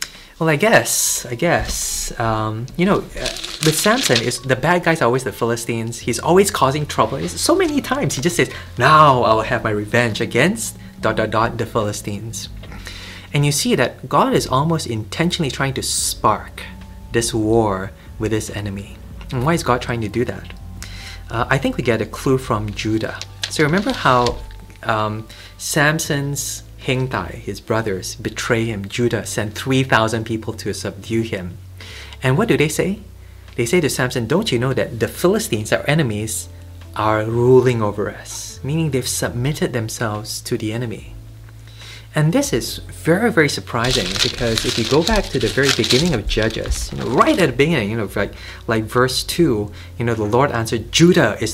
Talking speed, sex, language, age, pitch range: 180 wpm, male, English, 20-39, 105-140 Hz